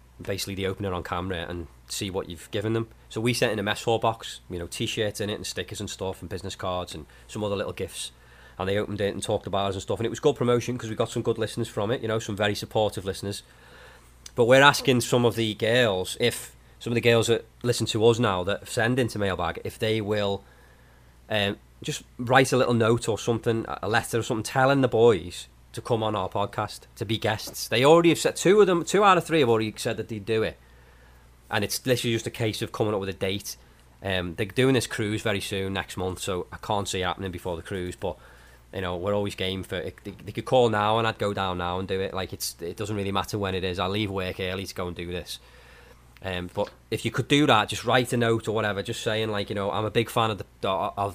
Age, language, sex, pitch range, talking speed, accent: 30-49, English, male, 90-115 Hz, 260 wpm, British